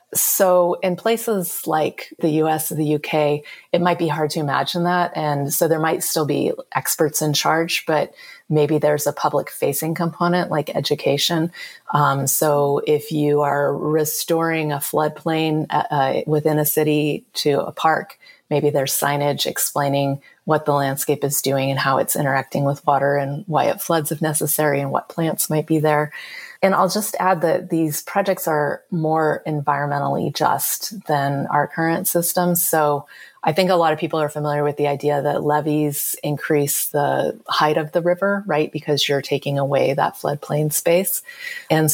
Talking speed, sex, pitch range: 170 wpm, female, 145-170 Hz